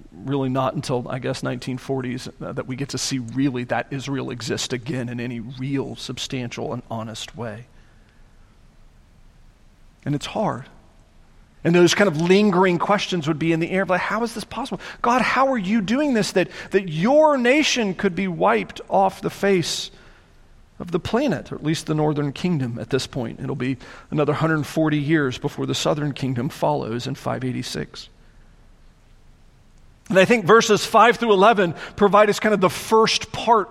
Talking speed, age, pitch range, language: 175 wpm, 40-59, 130-205 Hz, English